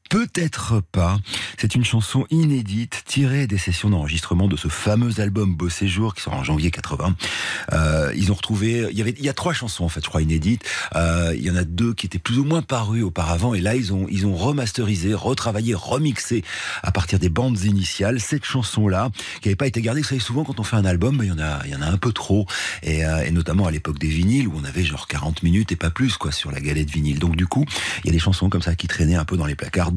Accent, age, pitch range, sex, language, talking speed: French, 40-59, 80-110 Hz, male, French, 260 wpm